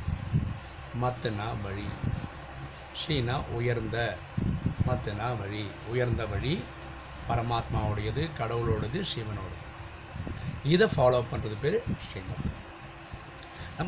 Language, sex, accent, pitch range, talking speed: Tamil, male, native, 105-135 Hz, 70 wpm